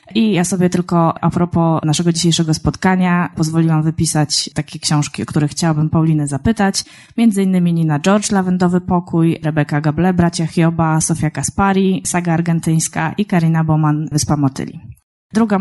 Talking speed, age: 145 wpm, 20-39